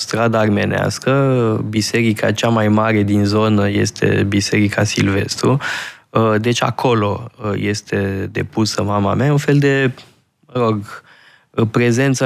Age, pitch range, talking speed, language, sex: 20-39, 105-125 Hz, 115 wpm, Romanian, male